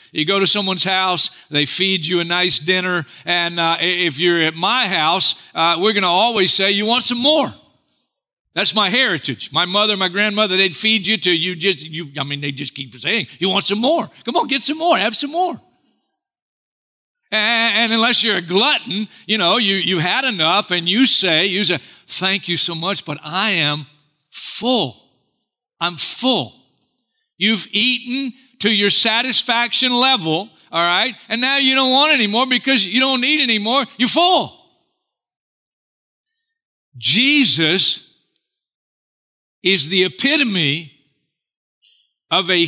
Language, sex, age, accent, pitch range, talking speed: English, male, 50-69, American, 170-245 Hz, 160 wpm